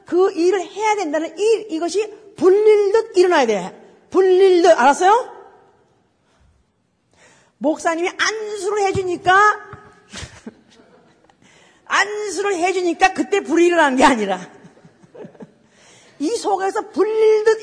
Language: Korean